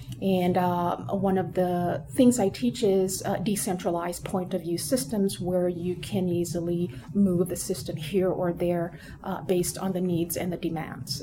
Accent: American